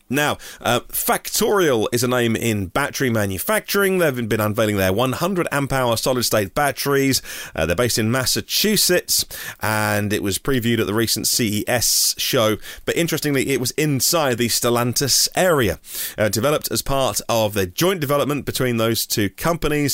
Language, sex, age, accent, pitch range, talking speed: English, male, 30-49, British, 105-135 Hz, 160 wpm